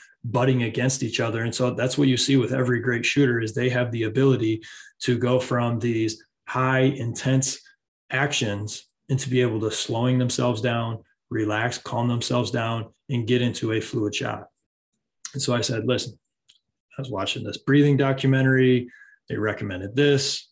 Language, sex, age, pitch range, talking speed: English, male, 20-39, 115-135 Hz, 170 wpm